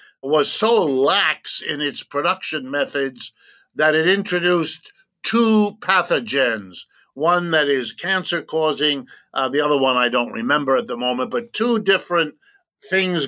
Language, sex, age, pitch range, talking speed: English, male, 50-69, 140-185 Hz, 140 wpm